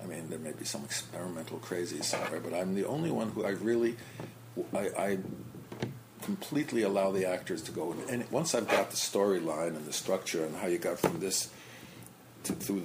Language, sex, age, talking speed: English, male, 50-69, 200 wpm